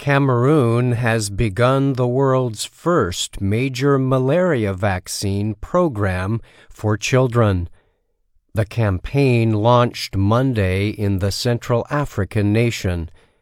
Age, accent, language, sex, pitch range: 50-69, American, Chinese, male, 100-125 Hz